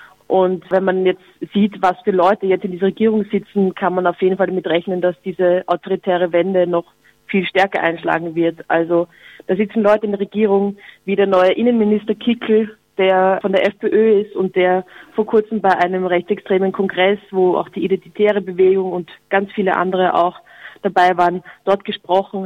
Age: 20-39